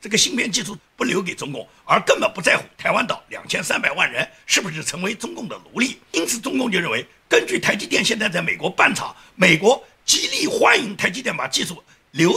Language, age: Chinese, 50-69